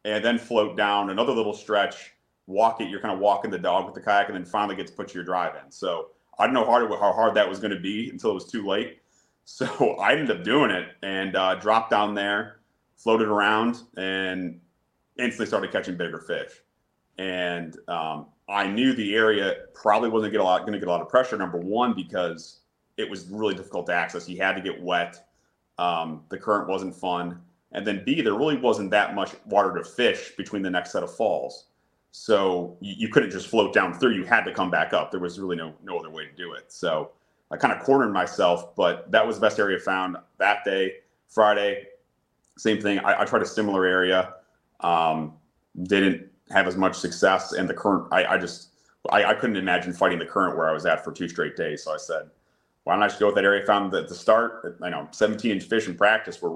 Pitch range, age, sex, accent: 90-115 Hz, 30-49, male, American